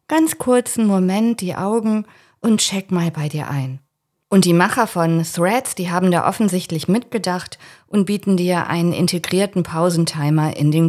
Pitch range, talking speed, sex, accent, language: 160-195 Hz, 160 wpm, female, German, German